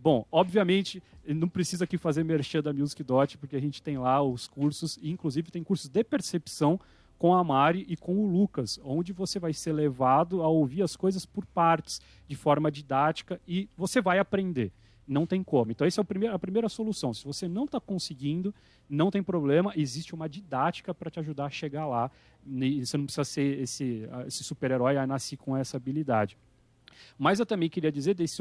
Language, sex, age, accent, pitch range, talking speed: Portuguese, male, 40-59, Brazilian, 140-185 Hz, 190 wpm